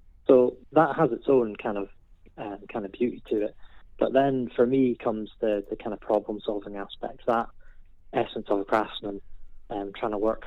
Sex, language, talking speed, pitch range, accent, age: male, English, 190 wpm, 105-130 Hz, British, 20-39